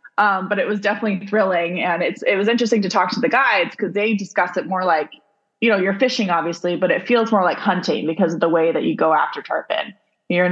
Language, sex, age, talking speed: English, female, 20-39, 245 wpm